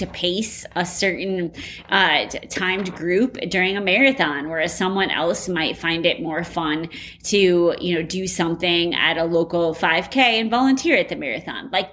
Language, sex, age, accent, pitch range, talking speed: English, female, 20-39, American, 175-220 Hz, 165 wpm